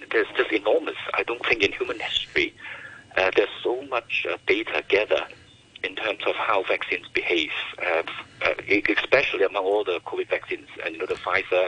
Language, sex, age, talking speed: English, male, 50-69, 180 wpm